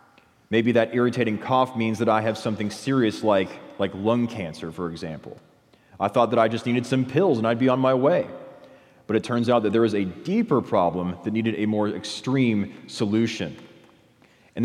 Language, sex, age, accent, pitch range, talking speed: English, male, 30-49, American, 105-125 Hz, 195 wpm